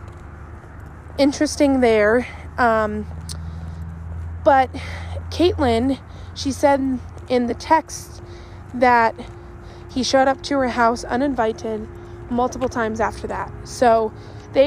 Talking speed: 100 wpm